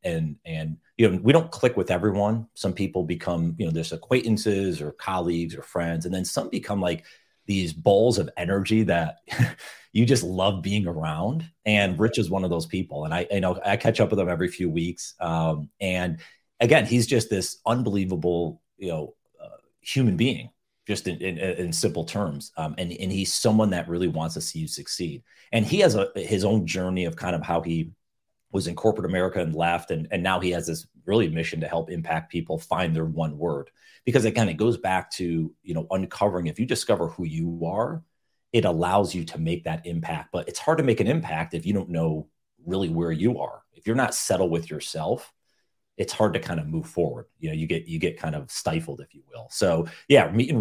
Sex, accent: male, American